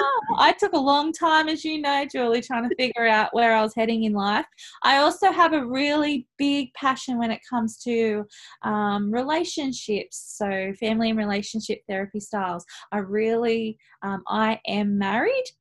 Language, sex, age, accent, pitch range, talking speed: English, female, 20-39, Australian, 195-240 Hz, 175 wpm